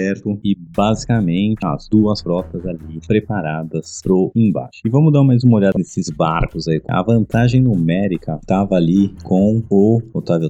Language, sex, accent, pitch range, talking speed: Portuguese, male, Brazilian, 85-105 Hz, 155 wpm